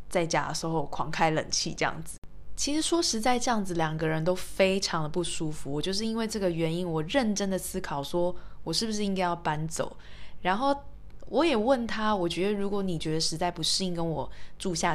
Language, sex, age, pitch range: Chinese, female, 20-39, 165-215 Hz